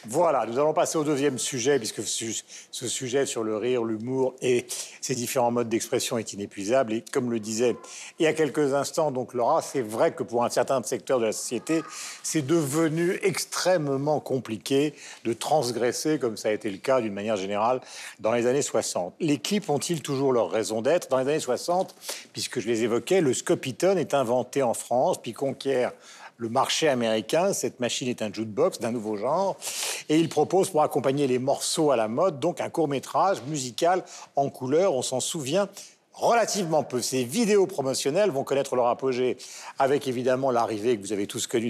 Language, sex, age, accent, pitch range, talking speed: French, male, 50-69, French, 120-160 Hz, 190 wpm